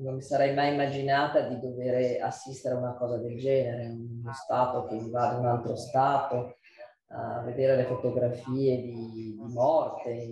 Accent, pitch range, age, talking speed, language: native, 120-140 Hz, 30-49, 165 wpm, Italian